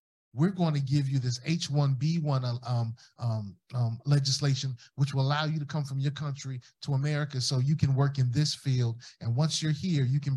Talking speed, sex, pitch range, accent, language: 205 wpm, male, 130-170 Hz, American, English